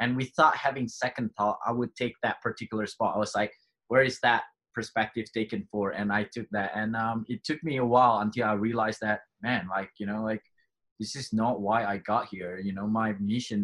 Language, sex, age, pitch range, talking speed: English, male, 20-39, 105-125 Hz, 225 wpm